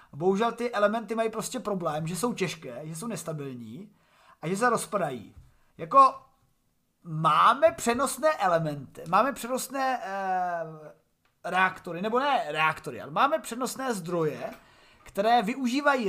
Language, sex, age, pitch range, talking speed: Czech, male, 30-49, 170-220 Hz, 125 wpm